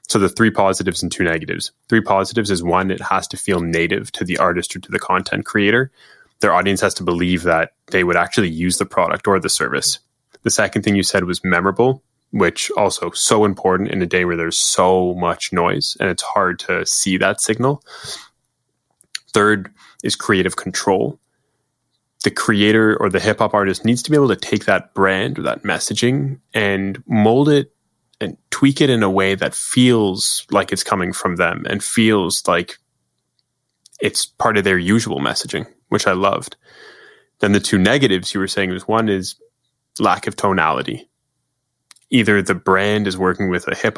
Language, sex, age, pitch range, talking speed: English, male, 10-29, 90-110 Hz, 185 wpm